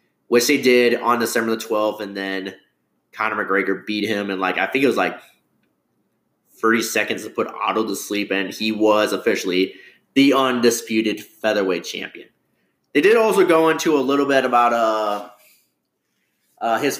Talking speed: 165 wpm